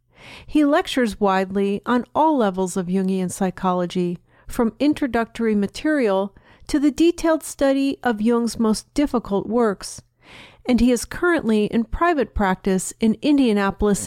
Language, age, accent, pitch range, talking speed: English, 50-69, American, 195-280 Hz, 130 wpm